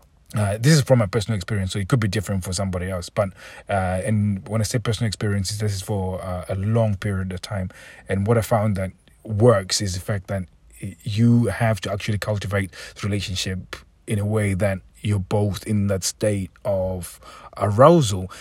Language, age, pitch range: English, 30-49, 95-110 Hz